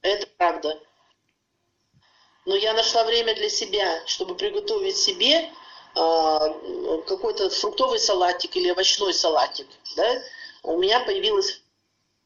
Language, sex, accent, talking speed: Russian, male, native, 105 wpm